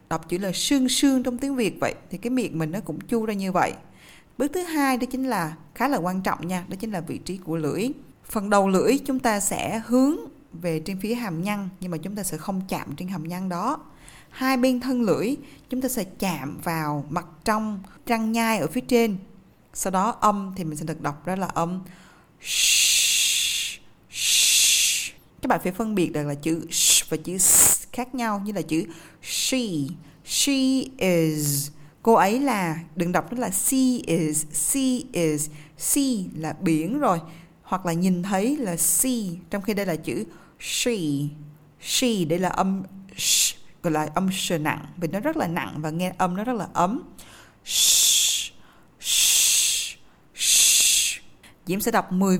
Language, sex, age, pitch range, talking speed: Vietnamese, female, 20-39, 165-235 Hz, 185 wpm